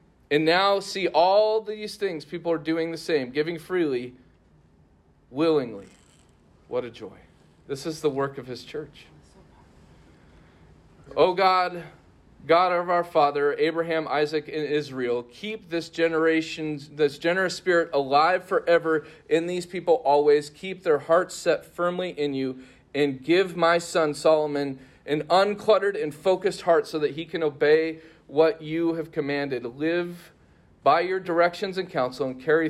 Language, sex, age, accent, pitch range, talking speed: English, male, 40-59, American, 130-175 Hz, 145 wpm